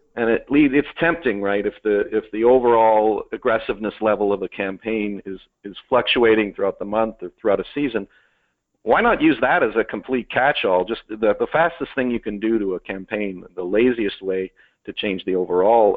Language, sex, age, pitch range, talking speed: English, male, 50-69, 95-115 Hz, 190 wpm